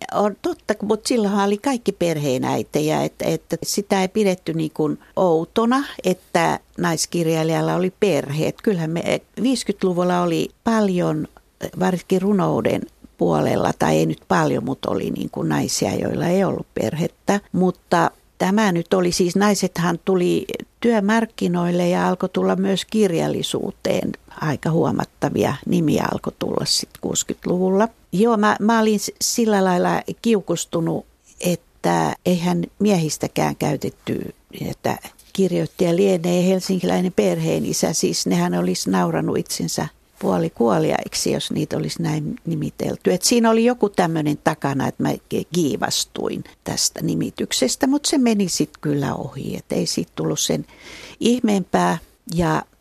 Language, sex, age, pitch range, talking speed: Finnish, female, 50-69, 165-210 Hz, 125 wpm